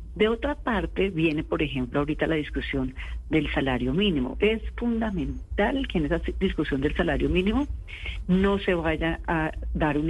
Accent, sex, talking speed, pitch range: Colombian, female, 160 wpm, 145-195 Hz